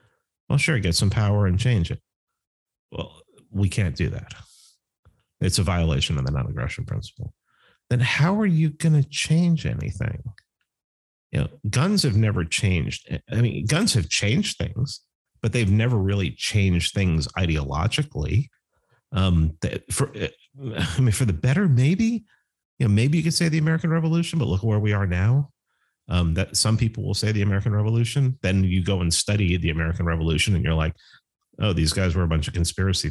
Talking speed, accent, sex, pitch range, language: 180 wpm, American, male, 90-125 Hz, English